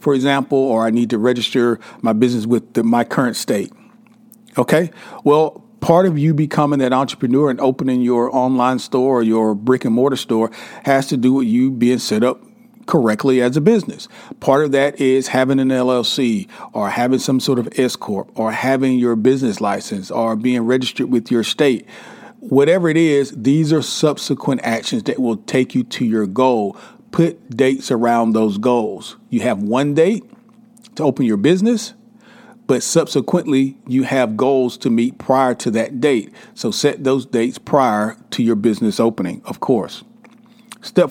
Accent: American